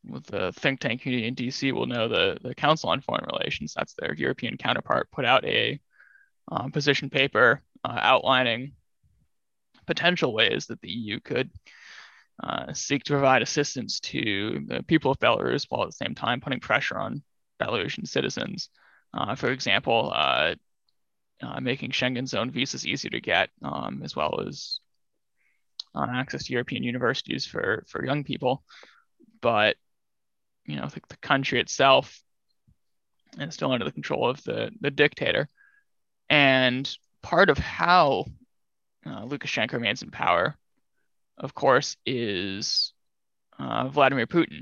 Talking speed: 150 wpm